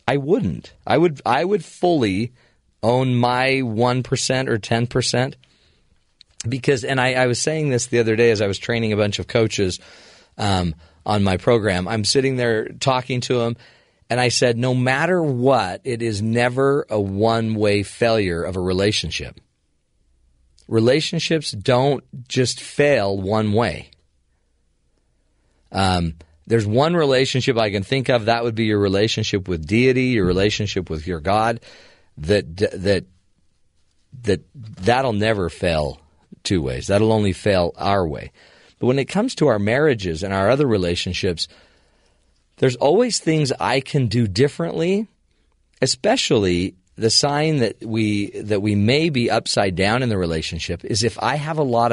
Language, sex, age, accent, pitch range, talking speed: English, male, 40-59, American, 95-130 Hz, 155 wpm